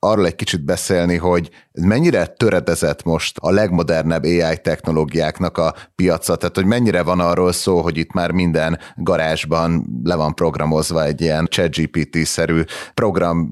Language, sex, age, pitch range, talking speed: Hungarian, male, 30-49, 85-100 Hz, 145 wpm